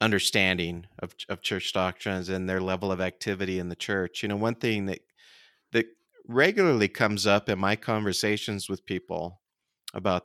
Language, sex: English, male